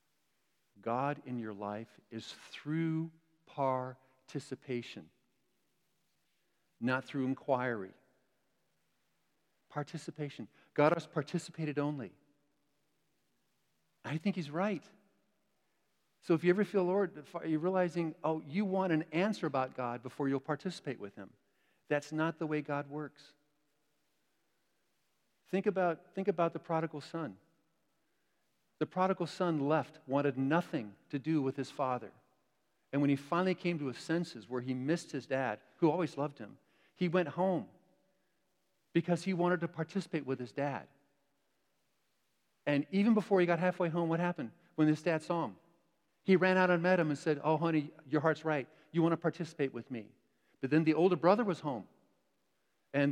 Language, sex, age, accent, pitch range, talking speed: English, male, 50-69, American, 145-180 Hz, 150 wpm